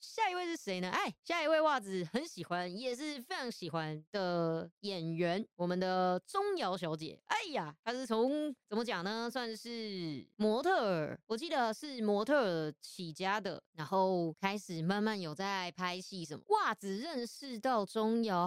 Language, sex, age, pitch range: Chinese, female, 20-39, 175-240 Hz